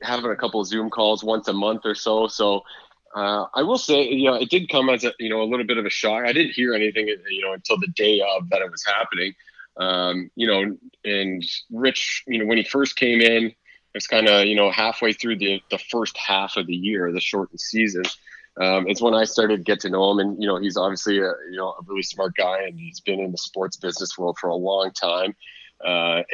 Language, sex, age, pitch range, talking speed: English, male, 20-39, 95-120 Hz, 250 wpm